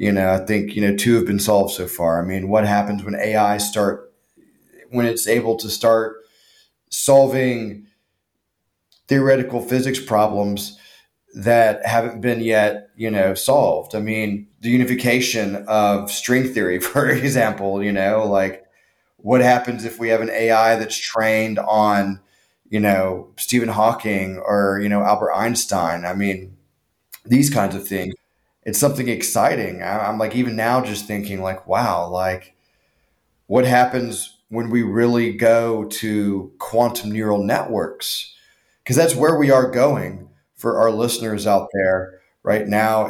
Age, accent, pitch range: 30-49, American, 100-120 Hz